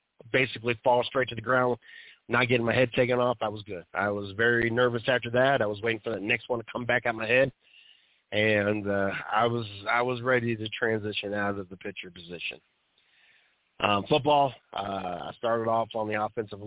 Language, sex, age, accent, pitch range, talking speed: English, male, 30-49, American, 95-115 Hz, 205 wpm